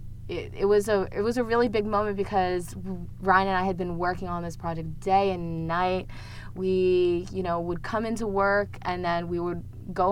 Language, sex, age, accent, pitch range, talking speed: English, female, 20-39, American, 155-200 Hz, 210 wpm